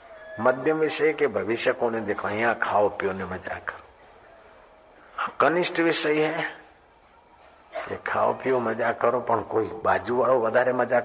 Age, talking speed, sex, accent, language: 60-79, 140 wpm, male, native, Hindi